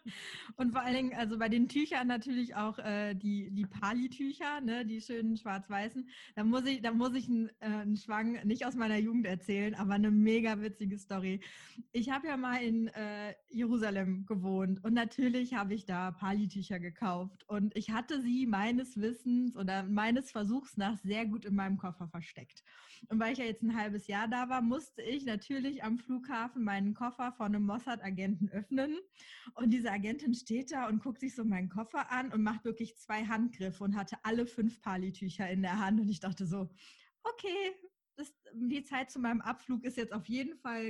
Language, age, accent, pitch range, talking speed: German, 20-39, German, 200-250 Hz, 195 wpm